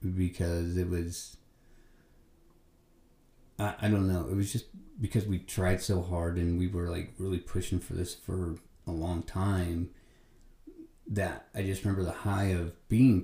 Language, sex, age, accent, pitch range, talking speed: English, male, 30-49, American, 85-100 Hz, 160 wpm